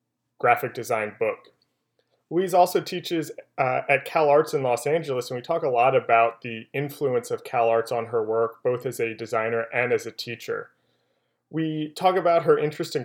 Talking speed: 180 wpm